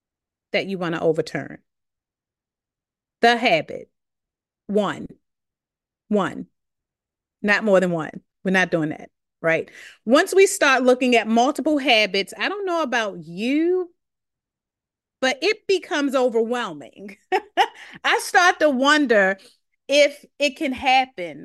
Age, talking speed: 30-49, 115 wpm